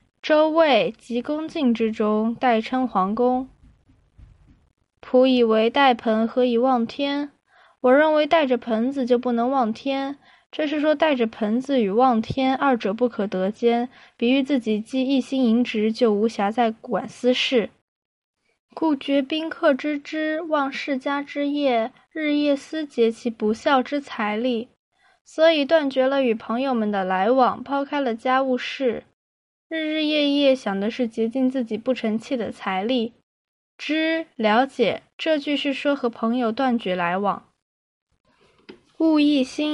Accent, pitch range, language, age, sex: native, 230-285 Hz, Chinese, 10-29, female